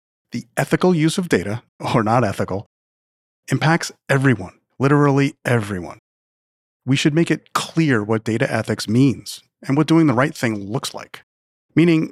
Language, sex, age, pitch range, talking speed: English, male, 30-49, 110-150 Hz, 150 wpm